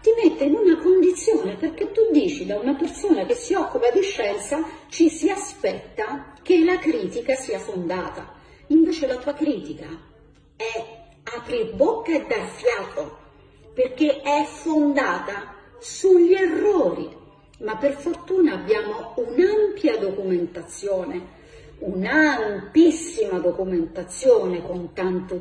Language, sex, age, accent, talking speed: Russian, female, 40-59, Italian, 115 wpm